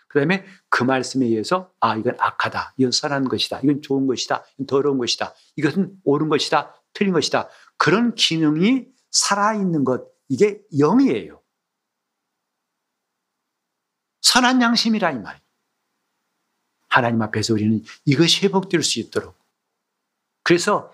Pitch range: 140-190 Hz